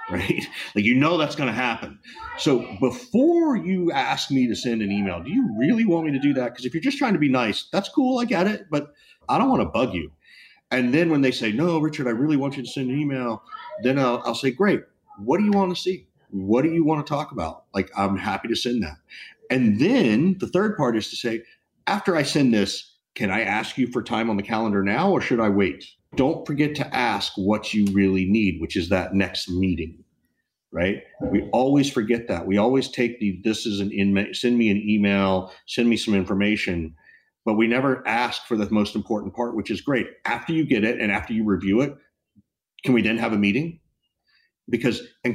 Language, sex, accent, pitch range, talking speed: English, male, American, 100-150 Hz, 230 wpm